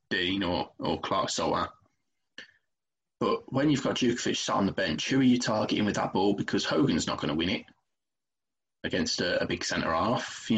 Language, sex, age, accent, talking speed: English, male, 20-39, British, 205 wpm